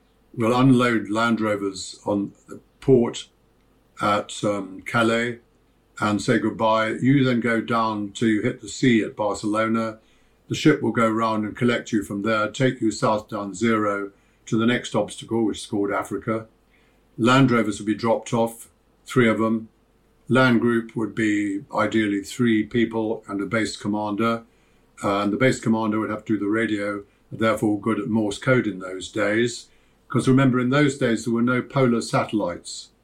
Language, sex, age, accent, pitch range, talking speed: English, male, 50-69, British, 105-120 Hz, 170 wpm